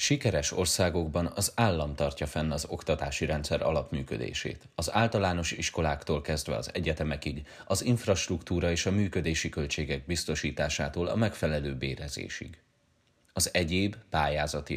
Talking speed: 120 wpm